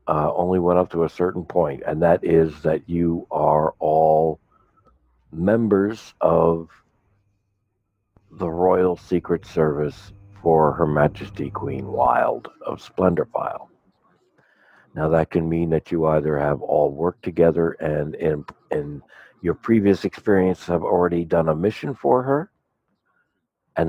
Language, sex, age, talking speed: English, male, 60-79, 135 wpm